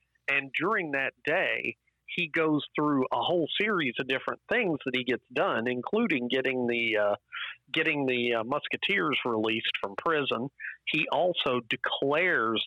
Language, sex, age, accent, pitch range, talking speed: English, male, 40-59, American, 120-140 Hz, 145 wpm